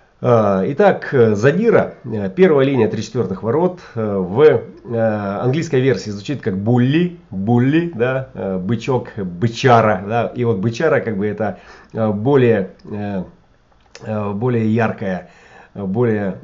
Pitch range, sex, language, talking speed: 100-125 Hz, male, Russian, 100 wpm